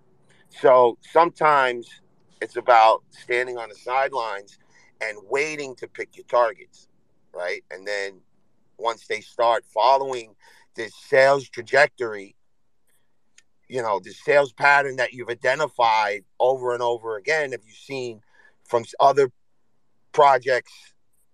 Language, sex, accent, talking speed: English, male, American, 120 wpm